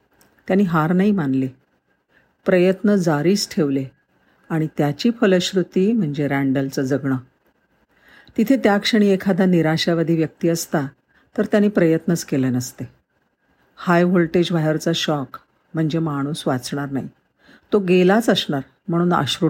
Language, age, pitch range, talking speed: Marathi, 50-69, 145-190 Hz, 85 wpm